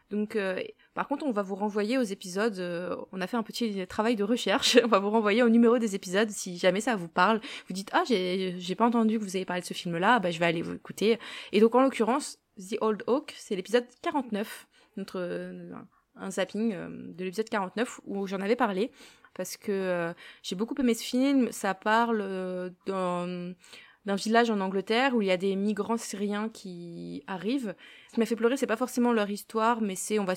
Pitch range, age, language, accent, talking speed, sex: 185-230 Hz, 20-39, French, French, 220 wpm, female